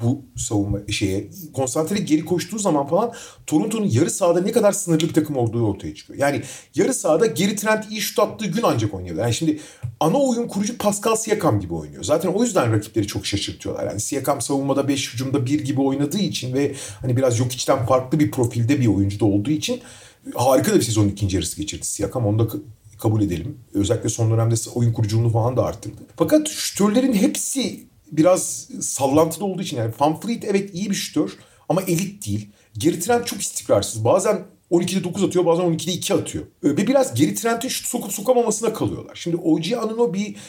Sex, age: male, 40-59